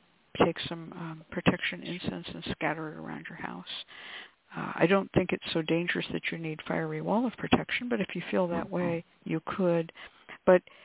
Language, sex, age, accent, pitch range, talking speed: English, female, 60-79, American, 165-205 Hz, 190 wpm